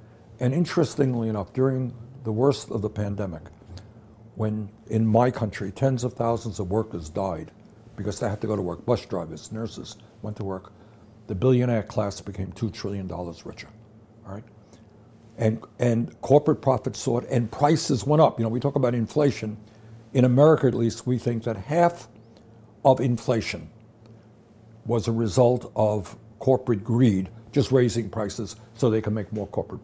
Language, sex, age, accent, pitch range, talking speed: English, male, 60-79, American, 105-125 Hz, 165 wpm